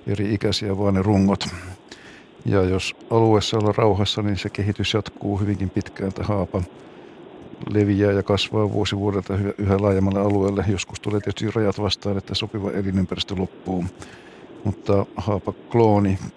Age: 60-79